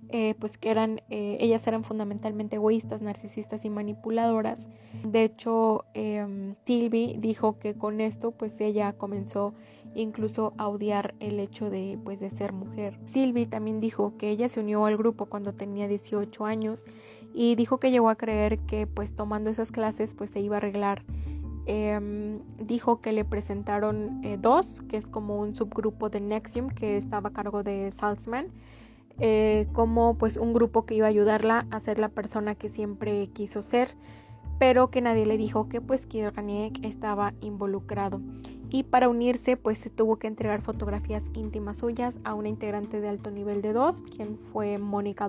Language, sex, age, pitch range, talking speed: Spanish, female, 20-39, 200-225 Hz, 175 wpm